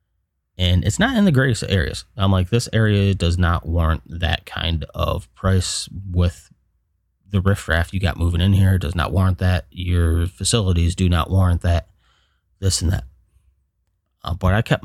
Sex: male